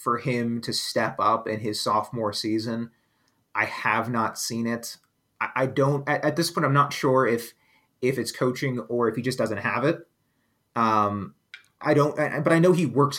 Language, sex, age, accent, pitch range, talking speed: English, male, 30-49, American, 120-150 Hz, 200 wpm